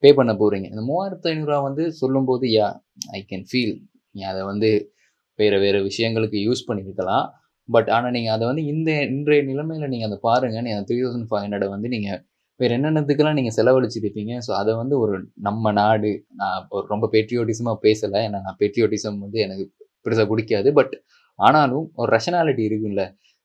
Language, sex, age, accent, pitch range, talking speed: Tamil, male, 20-39, native, 105-130 Hz, 165 wpm